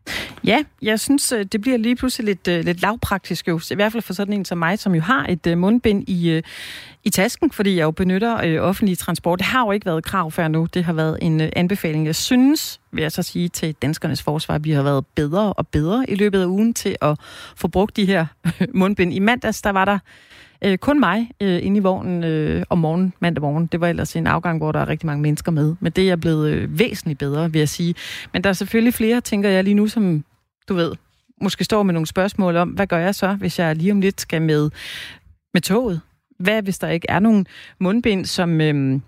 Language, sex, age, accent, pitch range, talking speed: Danish, female, 30-49, native, 160-205 Hz, 235 wpm